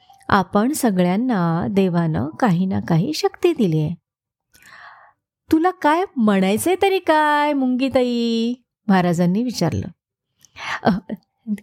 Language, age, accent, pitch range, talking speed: Marathi, 30-49, native, 200-310 Hz, 90 wpm